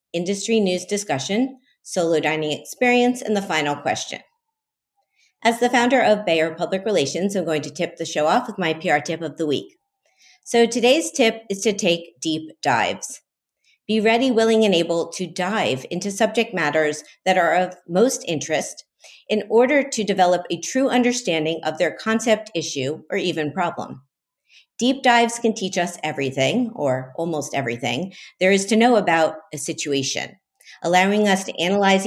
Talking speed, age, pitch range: 165 wpm, 50-69, 160-225 Hz